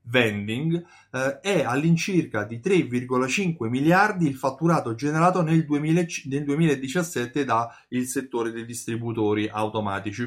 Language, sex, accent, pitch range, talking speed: Italian, male, native, 115-175 Hz, 110 wpm